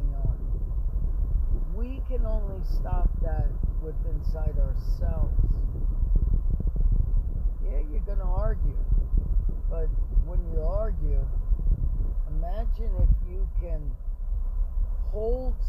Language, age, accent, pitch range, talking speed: English, 50-69, American, 70-80 Hz, 90 wpm